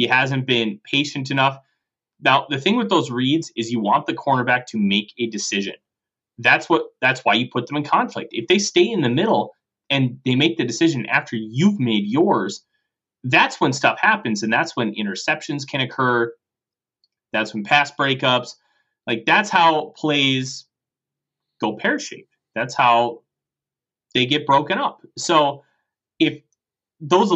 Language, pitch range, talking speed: English, 120-145 Hz, 160 wpm